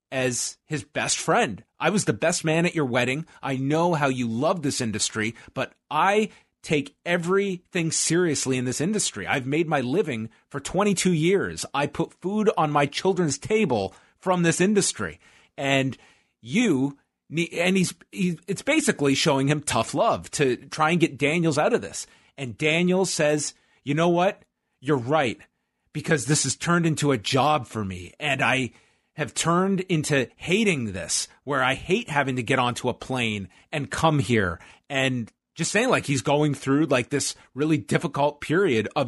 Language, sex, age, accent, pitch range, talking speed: English, male, 30-49, American, 130-170 Hz, 170 wpm